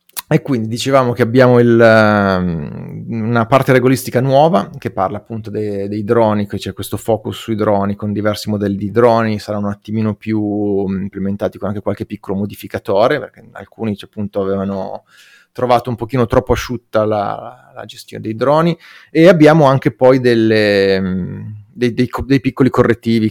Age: 30-49